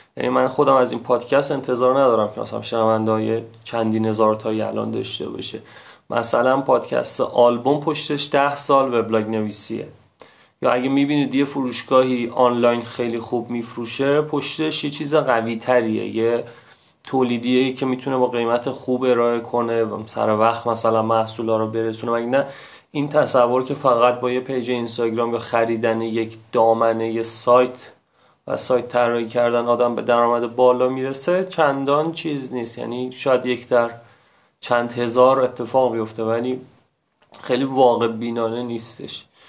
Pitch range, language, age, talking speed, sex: 115-130 Hz, Persian, 30-49, 145 wpm, male